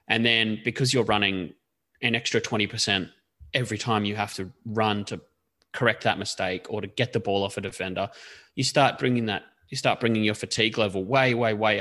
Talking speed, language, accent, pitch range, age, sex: 200 wpm, English, Australian, 105-135 Hz, 20-39, male